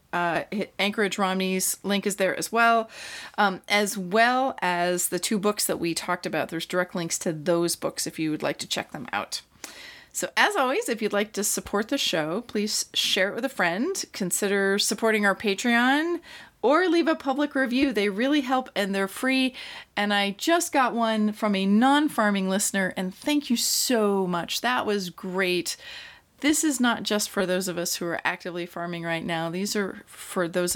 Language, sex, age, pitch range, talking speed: English, female, 30-49, 180-240 Hz, 195 wpm